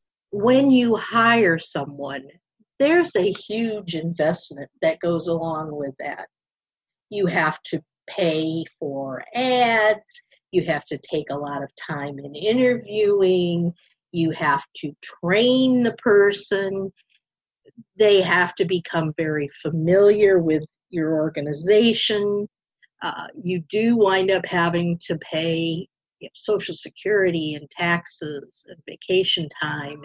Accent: American